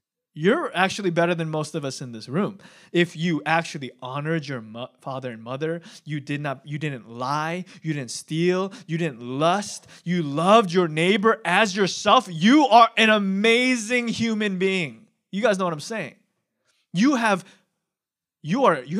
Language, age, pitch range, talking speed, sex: English, 20-39, 160-210 Hz, 170 wpm, male